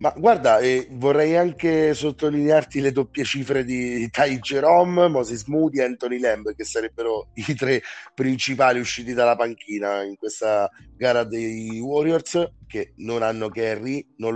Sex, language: male, Italian